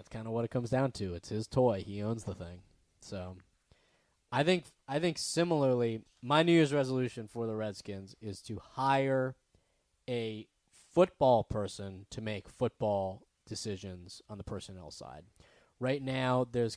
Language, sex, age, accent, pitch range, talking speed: English, male, 20-39, American, 115-135 Hz, 160 wpm